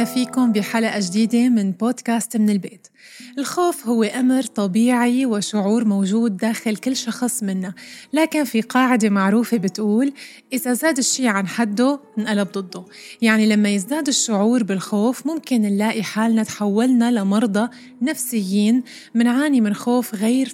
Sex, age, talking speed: female, 20-39, 130 wpm